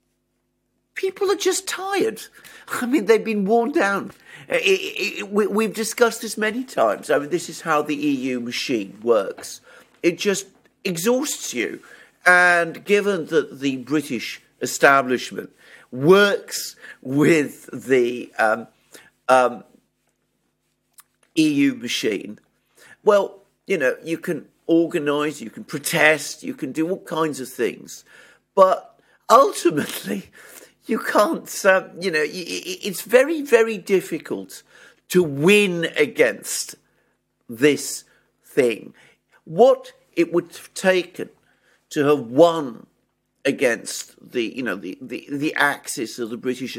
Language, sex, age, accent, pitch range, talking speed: English, male, 50-69, British, 145-220 Hz, 115 wpm